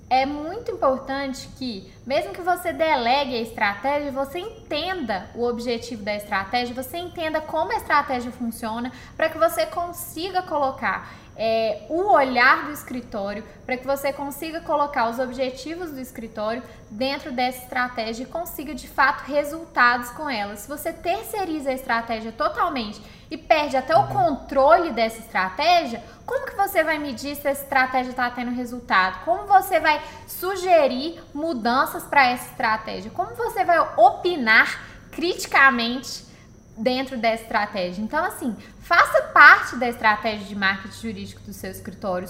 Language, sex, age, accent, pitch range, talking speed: English, female, 10-29, Brazilian, 240-325 Hz, 145 wpm